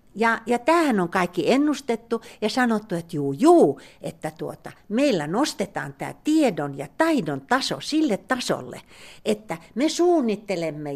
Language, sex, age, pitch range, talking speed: Finnish, female, 60-79, 185-275 Hz, 135 wpm